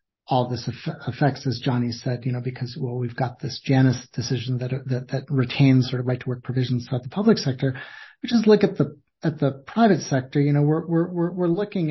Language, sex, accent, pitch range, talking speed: English, male, American, 130-160 Hz, 225 wpm